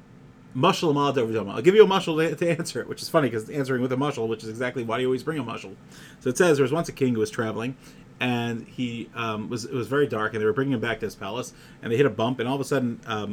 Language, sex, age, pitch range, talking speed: English, male, 30-49, 115-145 Hz, 305 wpm